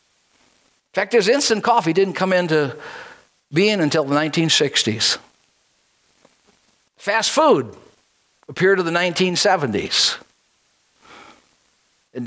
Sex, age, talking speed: male, 60-79, 95 wpm